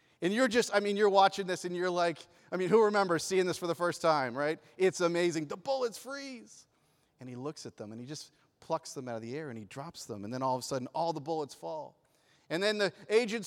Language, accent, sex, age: English, American, male, 40-59